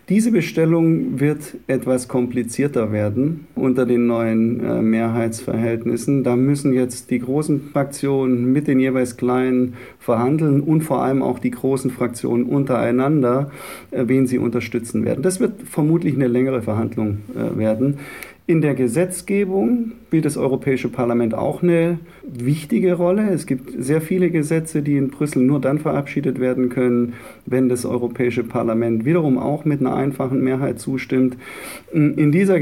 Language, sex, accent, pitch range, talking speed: German, male, German, 125-150 Hz, 140 wpm